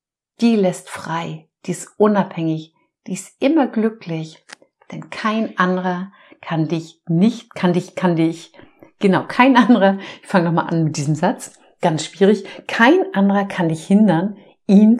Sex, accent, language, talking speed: female, German, German, 150 wpm